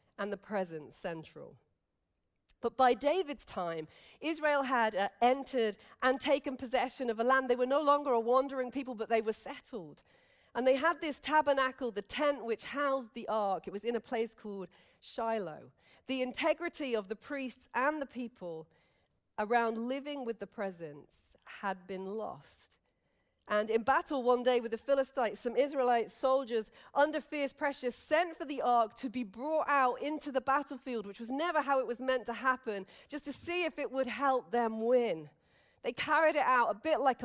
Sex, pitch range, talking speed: female, 230-290 Hz, 180 wpm